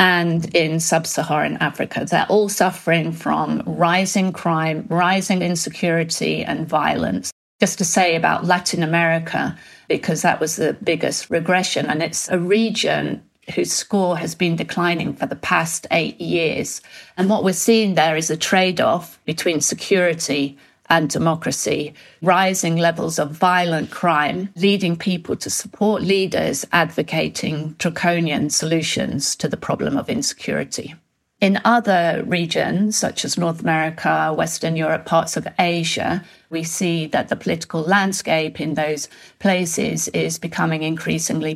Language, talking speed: English, 135 wpm